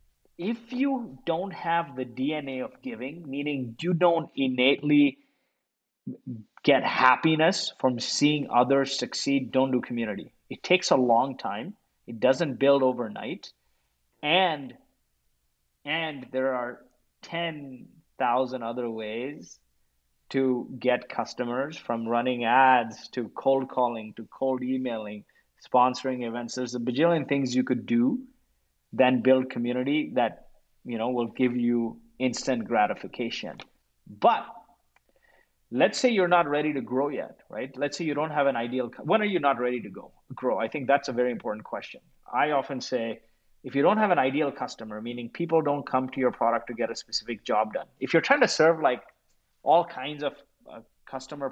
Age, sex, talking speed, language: 30-49, male, 160 wpm, English